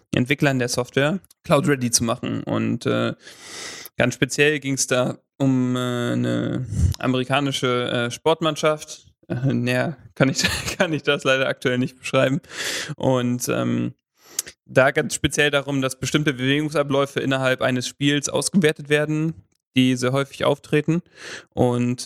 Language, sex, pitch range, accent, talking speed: English, male, 125-145 Hz, German, 130 wpm